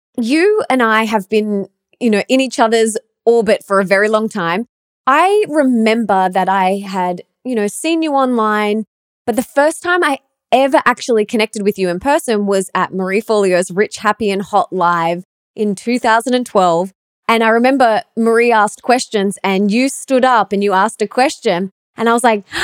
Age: 20-39